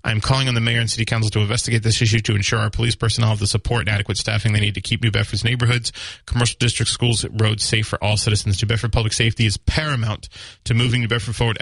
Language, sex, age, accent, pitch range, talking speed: English, male, 30-49, American, 105-120 Hz, 255 wpm